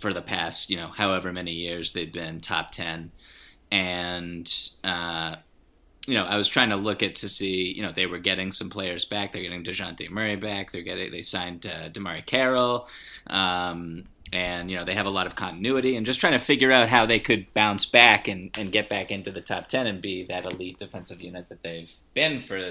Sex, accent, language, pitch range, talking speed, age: male, American, English, 90-105 Hz, 215 wpm, 30-49